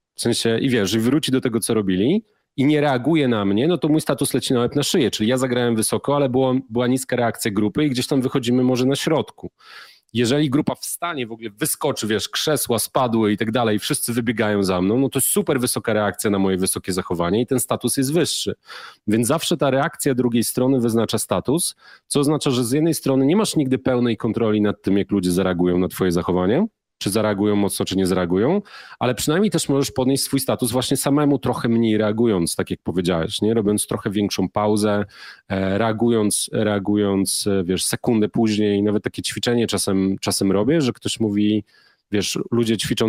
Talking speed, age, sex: 200 wpm, 30-49, male